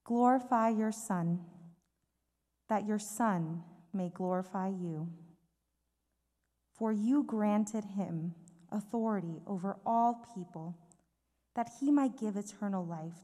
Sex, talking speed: female, 105 wpm